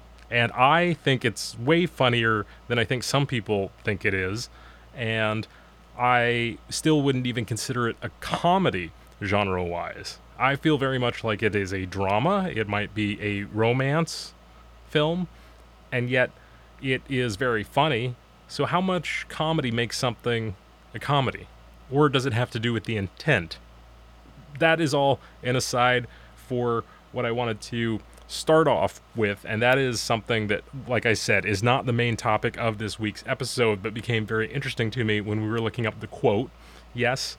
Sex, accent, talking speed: male, American, 170 wpm